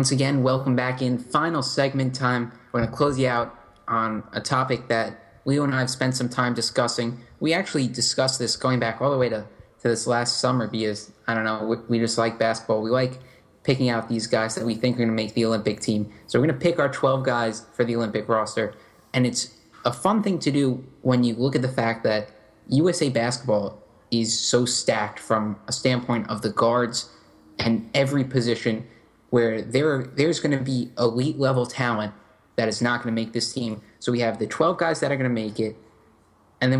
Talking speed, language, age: 220 wpm, English, 20-39